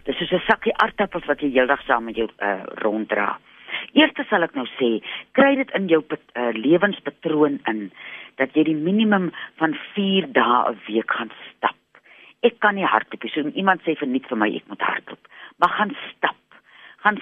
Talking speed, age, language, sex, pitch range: 195 wpm, 40-59, Dutch, female, 135-195 Hz